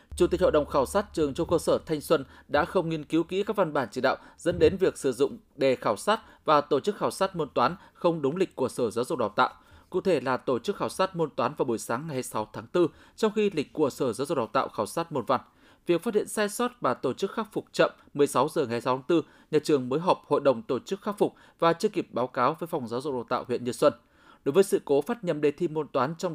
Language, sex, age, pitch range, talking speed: Vietnamese, male, 20-39, 140-190 Hz, 290 wpm